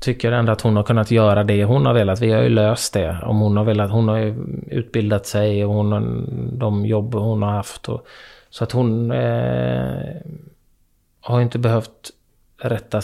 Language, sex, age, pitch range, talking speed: English, male, 20-39, 100-115 Hz, 195 wpm